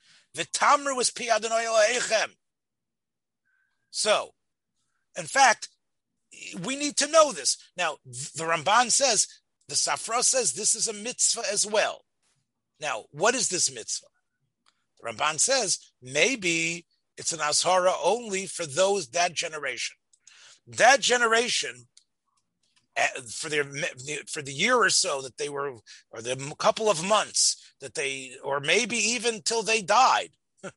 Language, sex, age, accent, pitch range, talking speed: English, male, 30-49, American, 170-235 Hz, 125 wpm